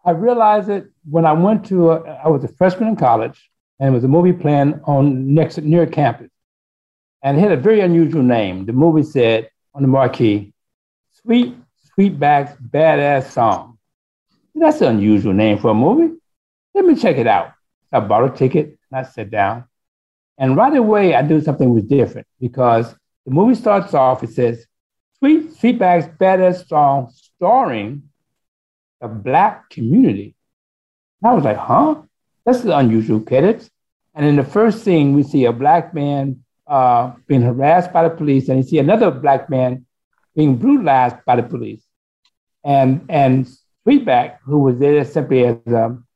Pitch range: 125-175 Hz